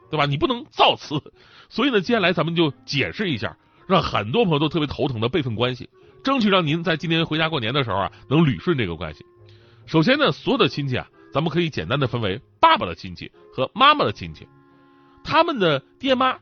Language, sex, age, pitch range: Chinese, male, 30-49, 110-170 Hz